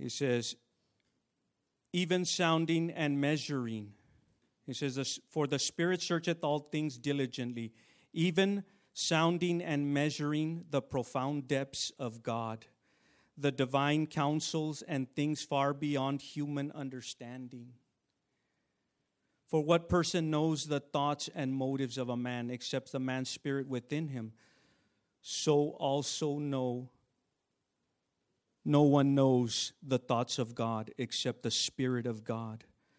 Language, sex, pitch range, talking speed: English, male, 125-145 Hz, 120 wpm